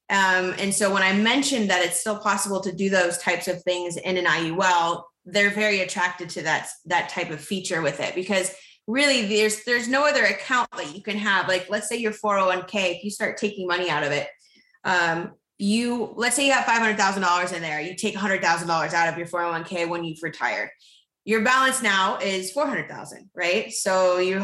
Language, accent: English, American